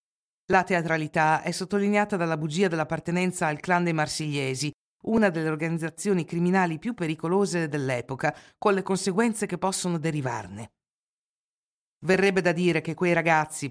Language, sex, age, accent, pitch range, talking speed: Italian, female, 50-69, native, 155-205 Hz, 130 wpm